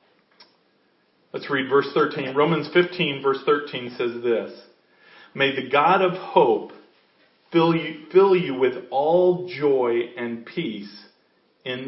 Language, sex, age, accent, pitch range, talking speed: English, male, 40-59, American, 145-200 Hz, 120 wpm